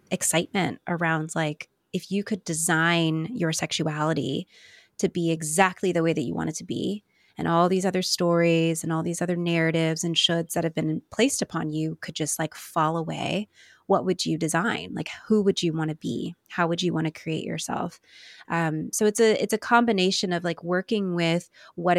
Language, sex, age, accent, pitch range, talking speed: English, female, 20-39, American, 160-185 Hz, 195 wpm